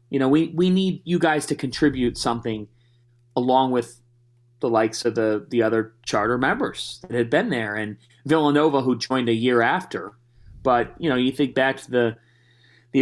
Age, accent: 30-49, American